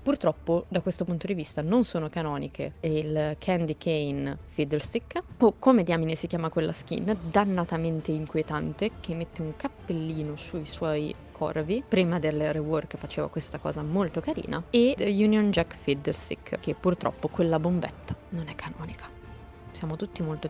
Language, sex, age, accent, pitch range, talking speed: Italian, female, 20-39, native, 155-185 Hz, 150 wpm